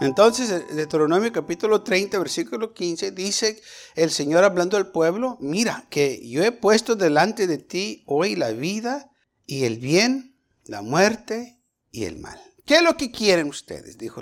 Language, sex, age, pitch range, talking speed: Spanish, male, 50-69, 160-235 Hz, 160 wpm